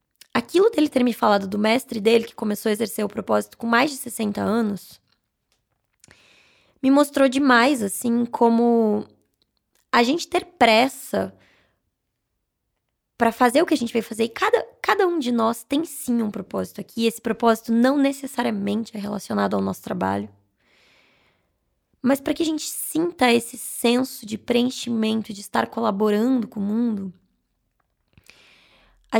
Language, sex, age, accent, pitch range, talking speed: Portuguese, female, 20-39, Brazilian, 210-265 Hz, 150 wpm